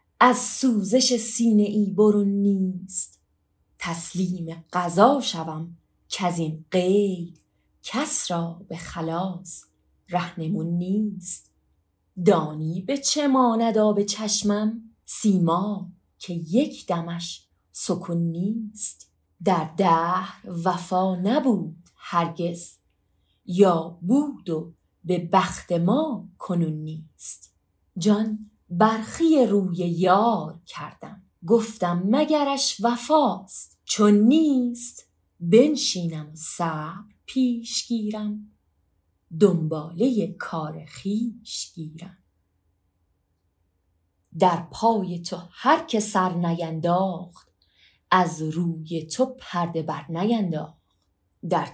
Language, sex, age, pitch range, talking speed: Persian, female, 30-49, 160-210 Hz, 85 wpm